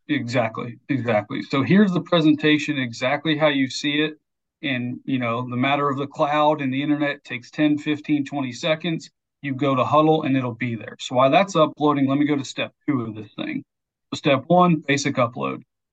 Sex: male